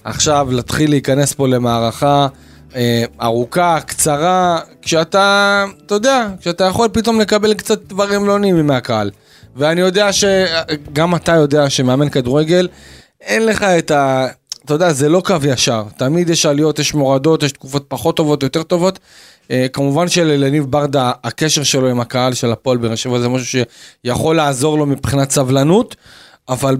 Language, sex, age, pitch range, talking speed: Hebrew, male, 30-49, 130-170 Hz, 150 wpm